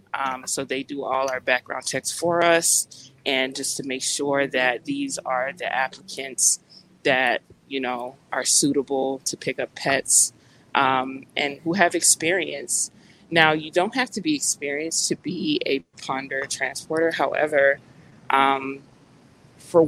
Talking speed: 150 wpm